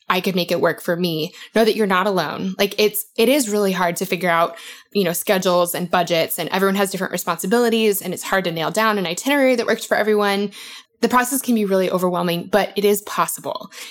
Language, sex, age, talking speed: English, female, 20-39, 235 wpm